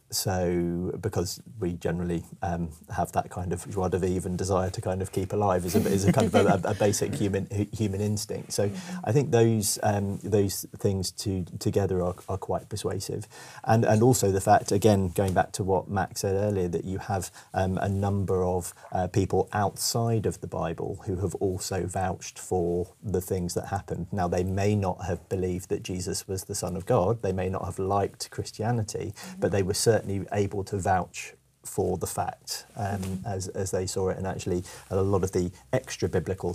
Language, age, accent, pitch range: English, 30-49, British, 90-100 Hz